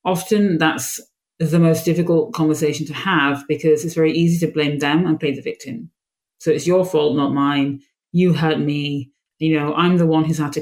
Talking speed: 205 wpm